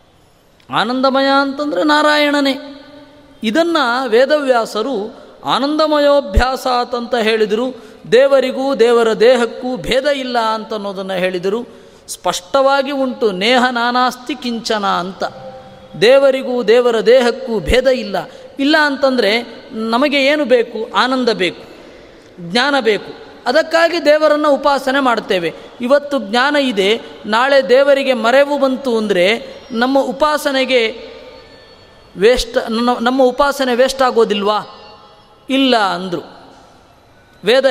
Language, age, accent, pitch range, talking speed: Kannada, 20-39, native, 225-280 Hz, 90 wpm